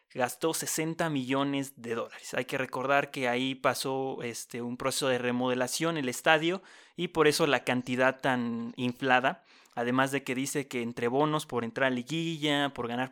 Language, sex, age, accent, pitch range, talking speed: Spanish, male, 30-49, Mexican, 125-160 Hz, 175 wpm